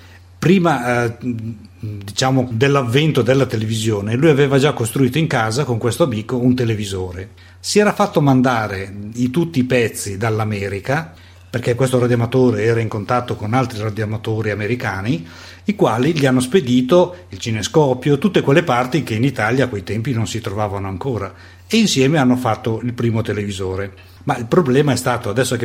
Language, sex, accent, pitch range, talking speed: Italian, male, native, 105-130 Hz, 165 wpm